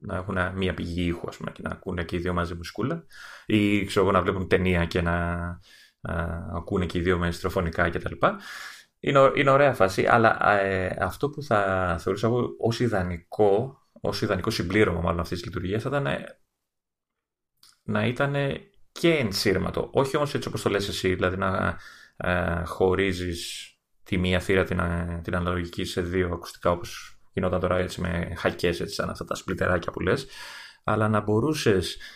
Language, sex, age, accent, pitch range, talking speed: Greek, male, 30-49, Spanish, 90-115 Hz, 160 wpm